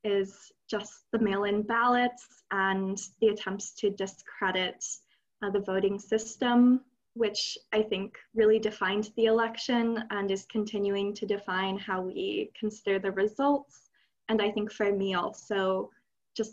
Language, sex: English, female